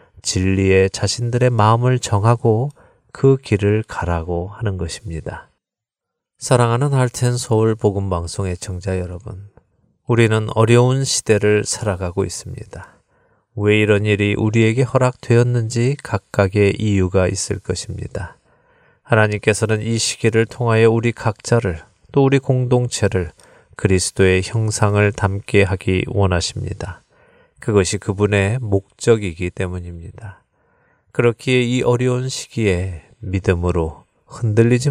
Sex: male